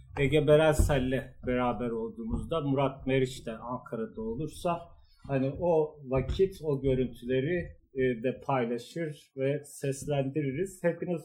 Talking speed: 100 wpm